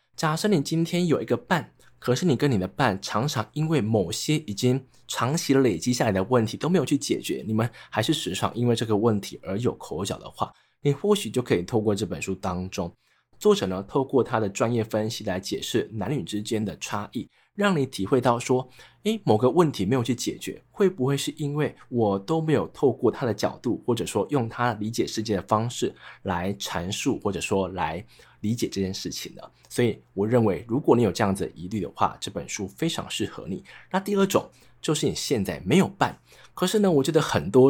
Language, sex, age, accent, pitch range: Chinese, male, 20-39, native, 105-150 Hz